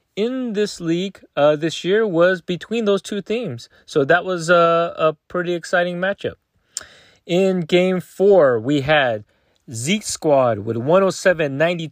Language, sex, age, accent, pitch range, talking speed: English, male, 30-49, American, 140-180 Hz, 155 wpm